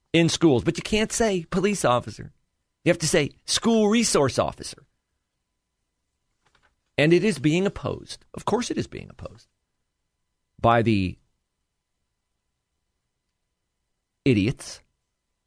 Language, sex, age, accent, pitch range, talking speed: English, male, 40-59, American, 110-165 Hz, 115 wpm